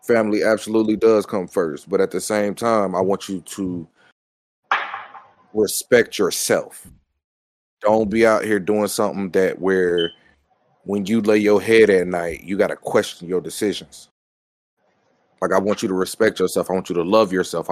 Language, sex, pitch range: English, male, 90-115 Hz